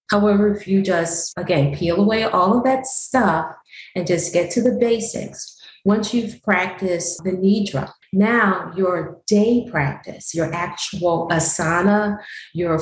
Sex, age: female, 40-59